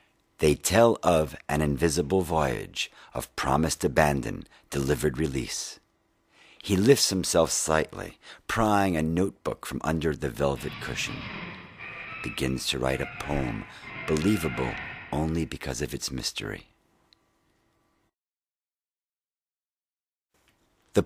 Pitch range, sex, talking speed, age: 70-95 Hz, male, 100 wpm, 50-69